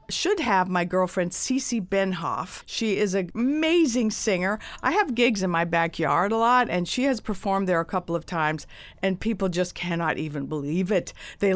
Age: 50-69